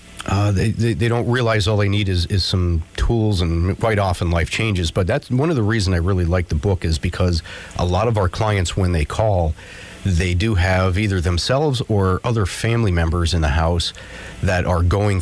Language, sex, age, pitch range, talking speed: English, male, 40-59, 90-110 Hz, 215 wpm